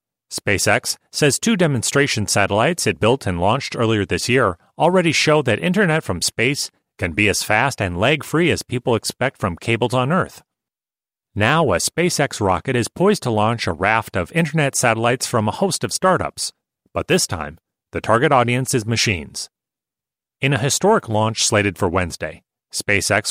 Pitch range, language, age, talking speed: 105-140 Hz, English, 30-49, 165 wpm